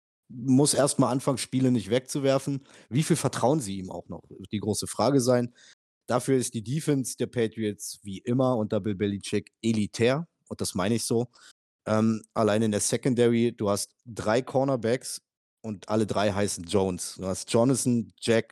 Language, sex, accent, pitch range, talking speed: German, male, German, 105-130 Hz, 170 wpm